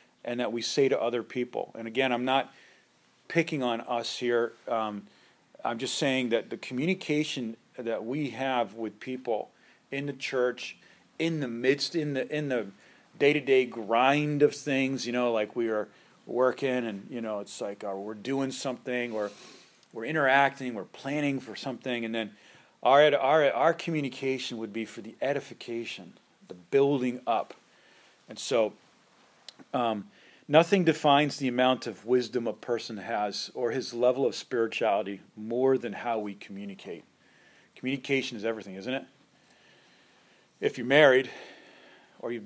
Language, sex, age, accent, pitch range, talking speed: English, male, 40-59, American, 110-135 Hz, 155 wpm